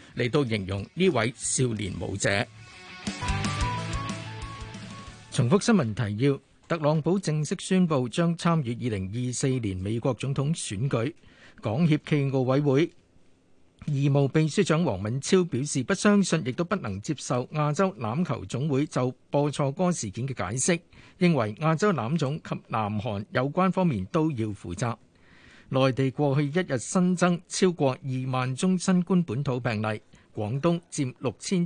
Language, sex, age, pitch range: Chinese, male, 50-69, 120-170 Hz